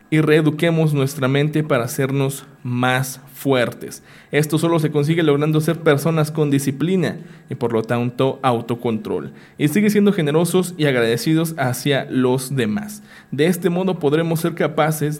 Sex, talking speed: male, 145 wpm